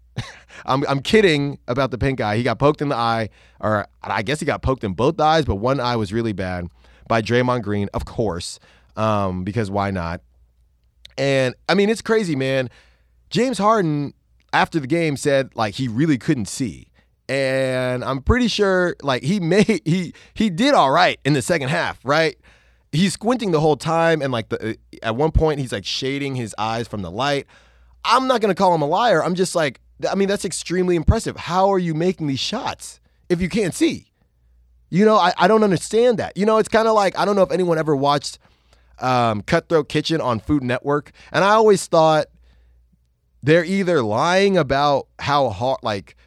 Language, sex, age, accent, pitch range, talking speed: English, male, 30-49, American, 105-170 Hz, 195 wpm